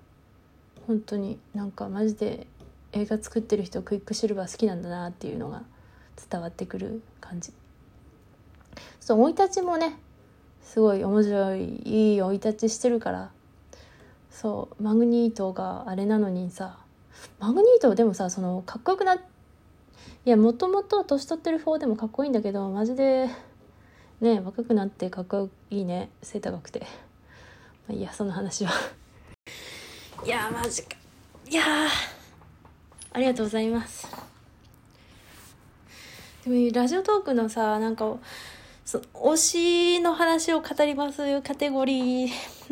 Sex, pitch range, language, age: female, 210-260 Hz, Japanese, 20-39